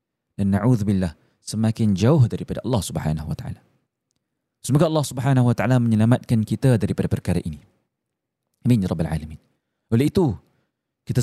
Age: 30-49